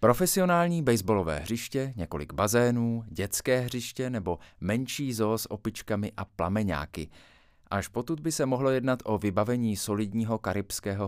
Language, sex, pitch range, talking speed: Czech, male, 90-120 Hz, 130 wpm